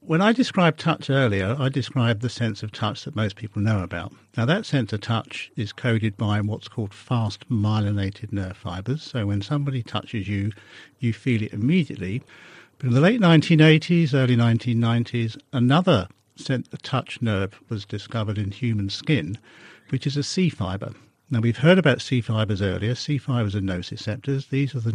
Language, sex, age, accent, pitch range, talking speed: English, male, 50-69, British, 105-135 Hz, 175 wpm